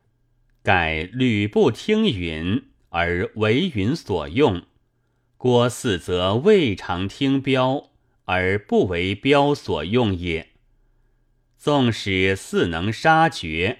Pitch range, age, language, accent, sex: 95-130 Hz, 30-49, Chinese, native, male